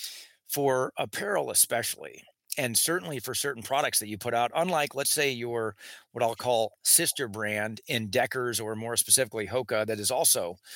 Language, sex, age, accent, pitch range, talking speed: English, male, 40-59, American, 115-140 Hz, 165 wpm